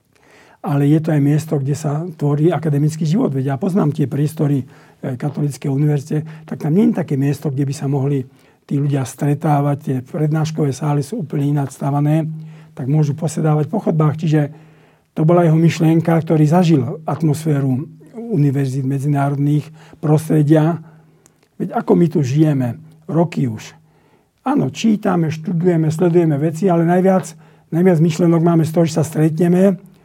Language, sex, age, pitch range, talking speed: Slovak, male, 60-79, 145-175 Hz, 150 wpm